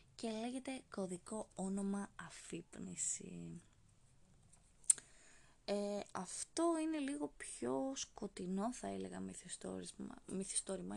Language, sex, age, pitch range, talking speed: Greek, female, 20-39, 180-230 Hz, 70 wpm